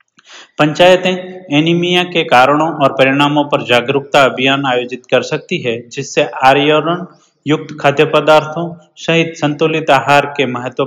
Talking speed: 125 wpm